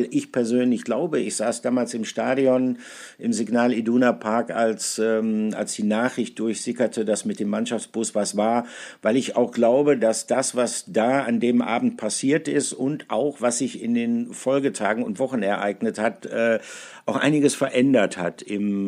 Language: German